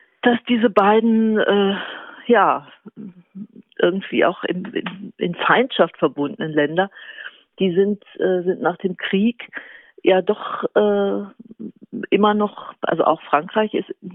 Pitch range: 165-210 Hz